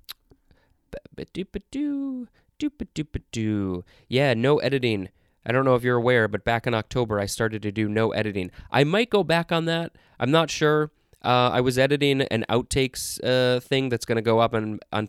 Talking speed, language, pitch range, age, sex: 170 wpm, English, 105-130 Hz, 20-39, male